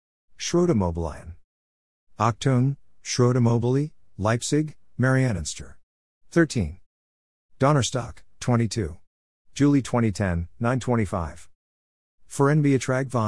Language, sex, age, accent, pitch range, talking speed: German, male, 50-69, American, 85-120 Hz, 50 wpm